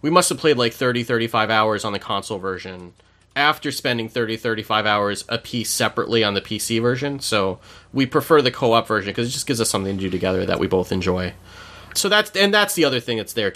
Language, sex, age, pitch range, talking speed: English, male, 30-49, 100-145 Hz, 230 wpm